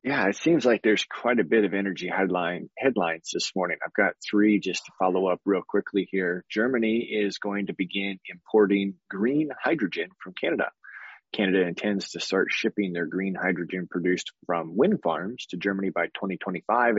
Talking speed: 175 wpm